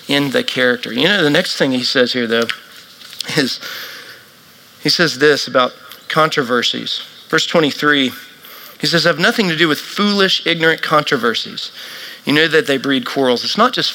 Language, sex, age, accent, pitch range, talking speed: English, male, 40-59, American, 135-185 Hz, 170 wpm